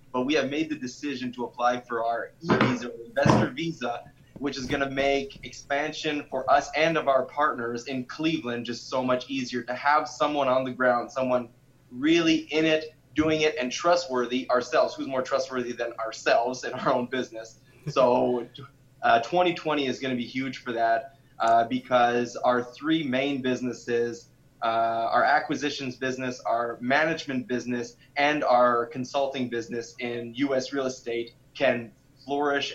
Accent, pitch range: American, 120-140 Hz